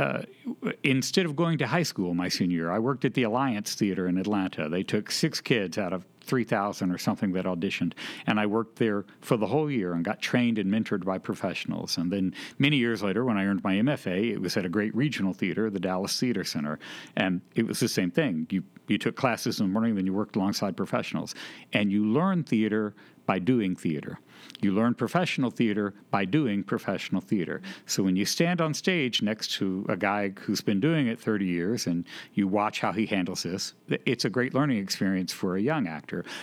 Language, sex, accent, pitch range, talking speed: English, male, American, 100-135 Hz, 215 wpm